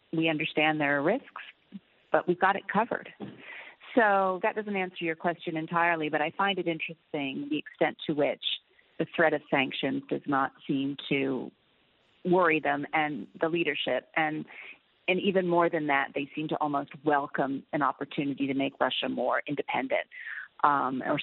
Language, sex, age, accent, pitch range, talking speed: English, female, 40-59, American, 155-190 Hz, 165 wpm